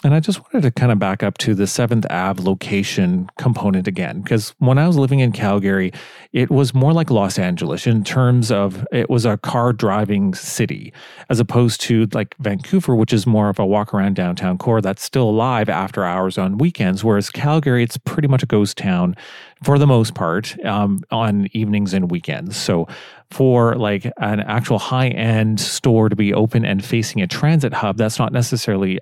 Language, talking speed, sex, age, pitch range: English, 195 wpm, male, 40-59, 105-125 Hz